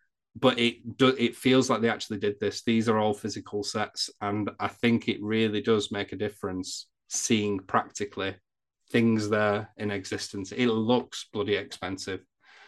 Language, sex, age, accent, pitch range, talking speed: English, male, 30-49, British, 100-120 Hz, 155 wpm